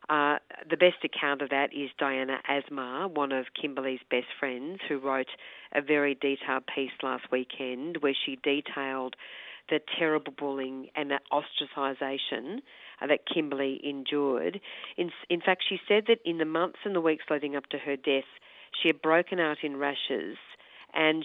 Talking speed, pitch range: 165 wpm, 135-160 Hz